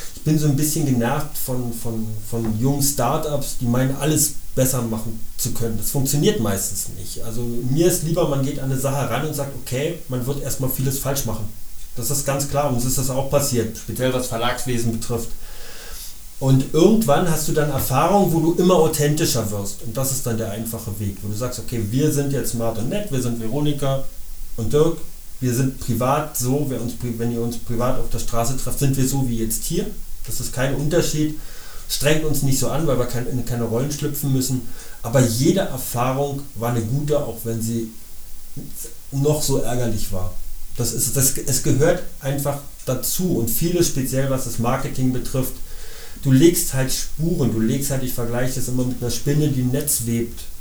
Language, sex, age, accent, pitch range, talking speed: German, male, 30-49, German, 115-145 Hz, 195 wpm